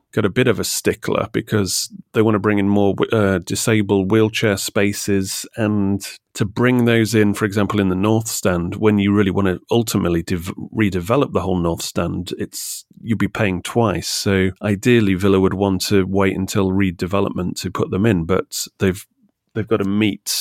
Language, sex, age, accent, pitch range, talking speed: English, male, 30-49, British, 95-115 Hz, 185 wpm